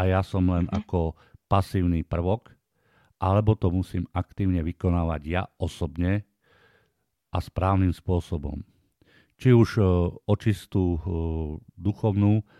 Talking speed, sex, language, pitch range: 100 wpm, male, Slovak, 85-105 Hz